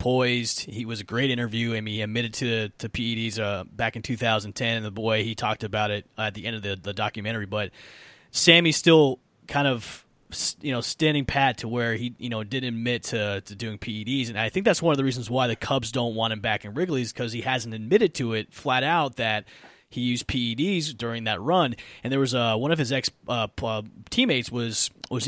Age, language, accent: 30-49, English, American